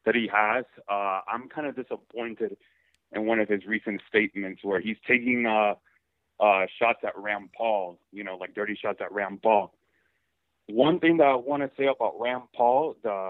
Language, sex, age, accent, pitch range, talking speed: English, male, 30-49, American, 100-120 Hz, 190 wpm